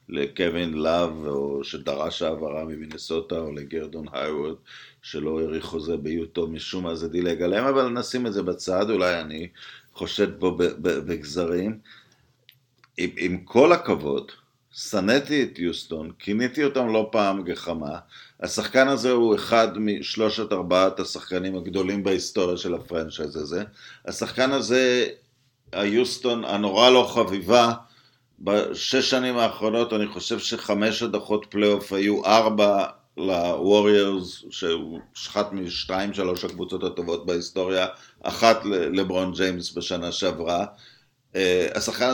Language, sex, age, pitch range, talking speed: Hebrew, male, 50-69, 90-115 Hz, 120 wpm